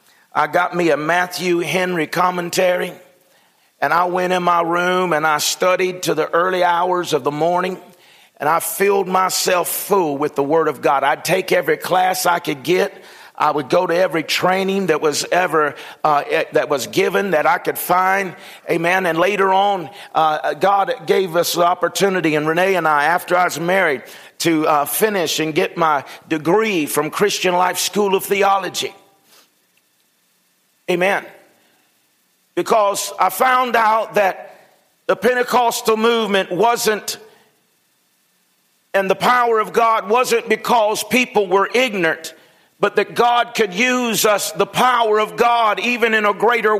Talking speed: 155 wpm